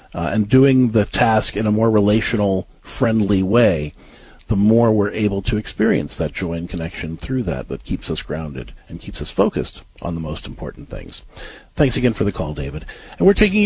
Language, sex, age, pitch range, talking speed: English, male, 50-69, 100-145 Hz, 200 wpm